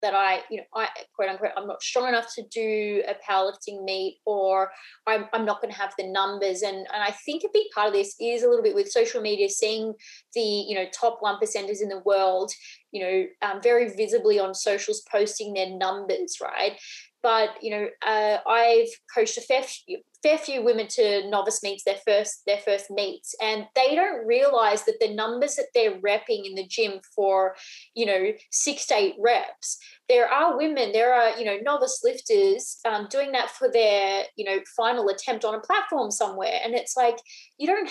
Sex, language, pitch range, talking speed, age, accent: female, English, 200-265 Hz, 205 wpm, 20-39, Australian